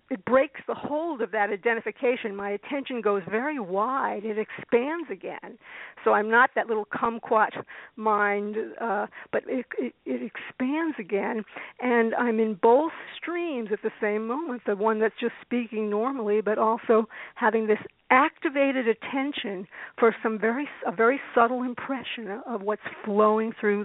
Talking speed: 150 wpm